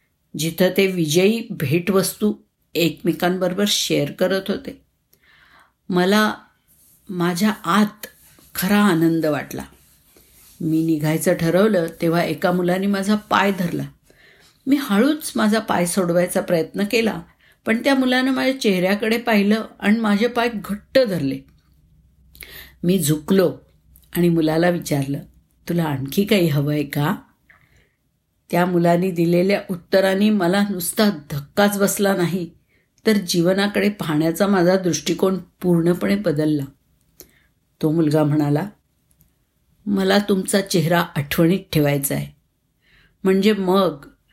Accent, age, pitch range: native, 60-79, 155-200 Hz